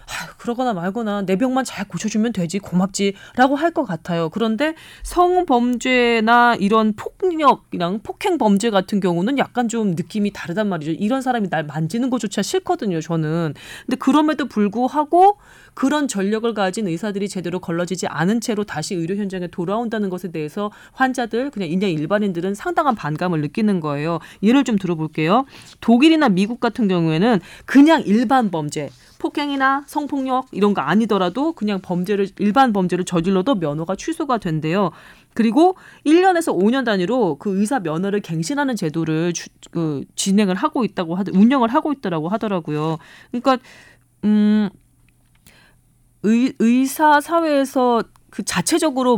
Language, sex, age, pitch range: Korean, female, 30-49, 180-255 Hz